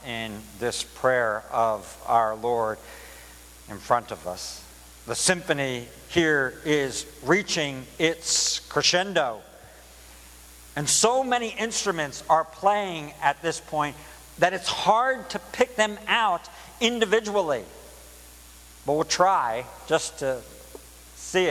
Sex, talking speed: male, 110 wpm